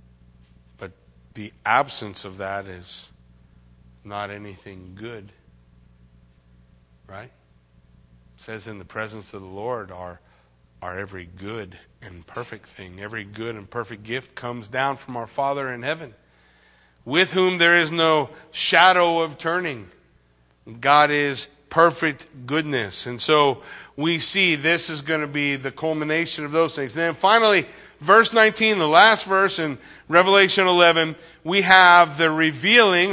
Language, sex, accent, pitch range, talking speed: English, male, American, 105-175 Hz, 140 wpm